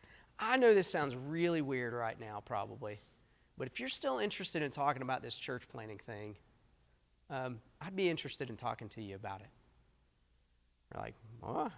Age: 40-59